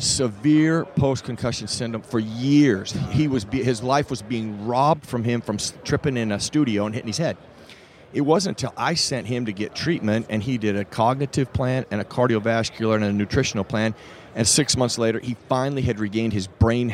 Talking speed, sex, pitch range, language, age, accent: 195 wpm, male, 110-135 Hz, English, 40-59, American